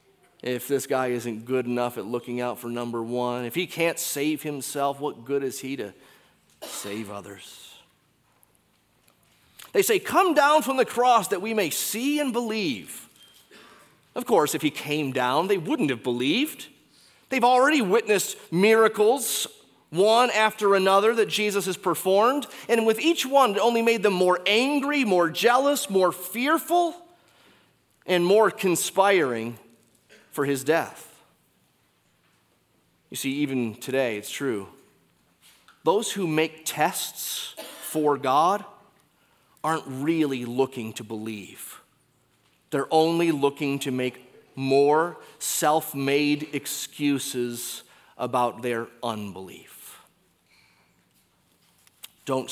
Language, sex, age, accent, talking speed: English, male, 30-49, American, 125 wpm